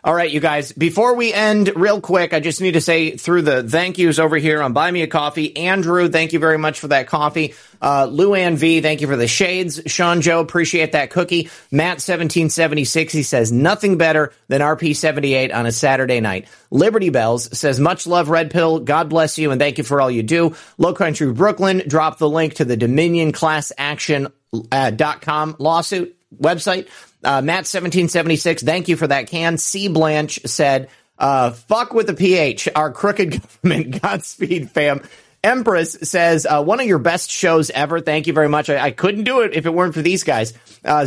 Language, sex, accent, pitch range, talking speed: English, male, American, 140-175 Hz, 195 wpm